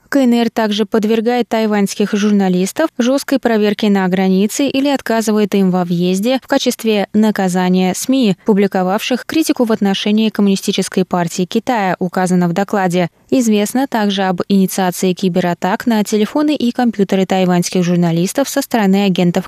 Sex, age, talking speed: female, 20-39, 130 wpm